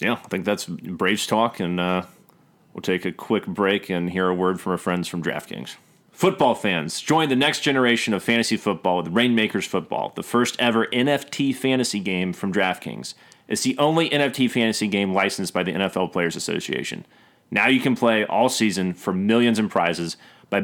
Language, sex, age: English, male, 30-49